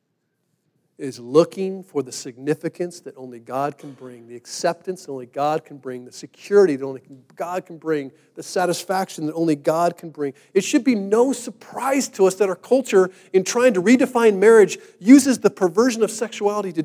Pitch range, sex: 140-195 Hz, male